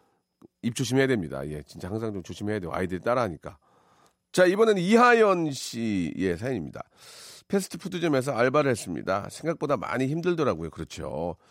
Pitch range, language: 130-165 Hz, Korean